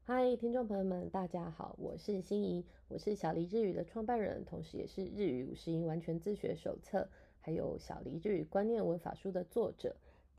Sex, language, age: female, Japanese, 20-39